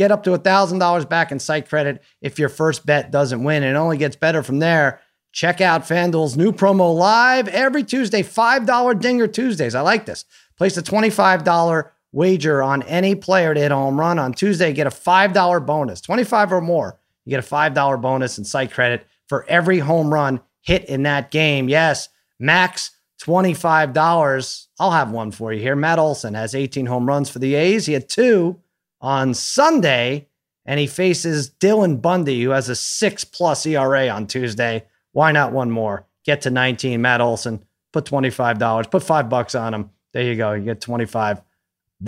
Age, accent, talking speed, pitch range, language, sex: 30-49, American, 185 wpm, 130-180 Hz, English, male